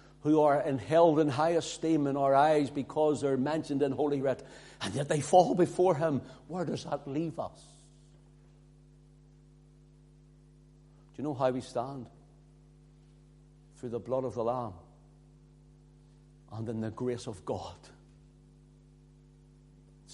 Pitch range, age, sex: 140-160 Hz, 60-79, male